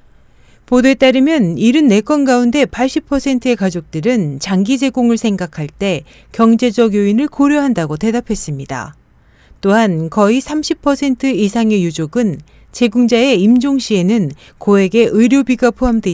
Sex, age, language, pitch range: female, 40-59, Korean, 185-260 Hz